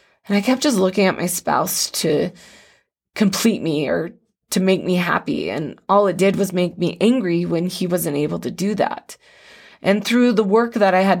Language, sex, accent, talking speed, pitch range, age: English, female, American, 205 wpm, 180-225 Hz, 20-39